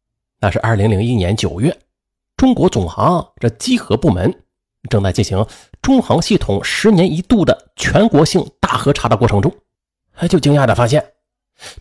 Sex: male